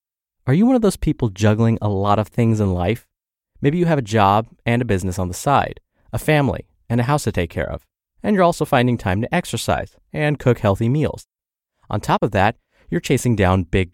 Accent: American